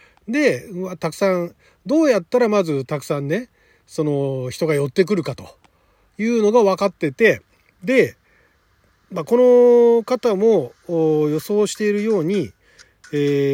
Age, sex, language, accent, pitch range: 40-59, male, Japanese, native, 155-230 Hz